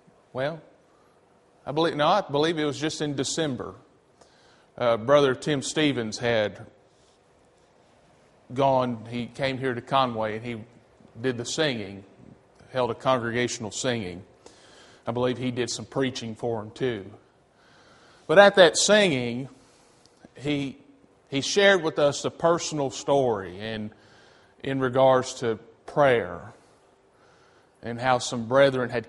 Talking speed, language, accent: 130 wpm, English, American